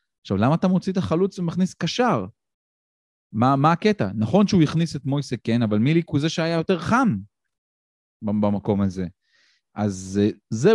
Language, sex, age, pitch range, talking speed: Hebrew, male, 30-49, 105-160 Hz, 160 wpm